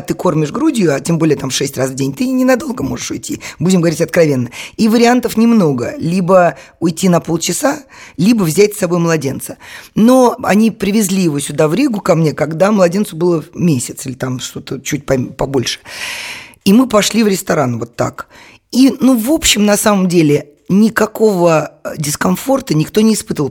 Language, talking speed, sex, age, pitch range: Russian, 170 wpm, female, 20-39, 155-215 Hz